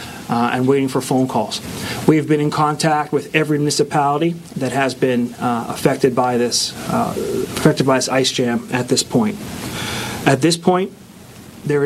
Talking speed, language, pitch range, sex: 165 wpm, English, 130-160 Hz, male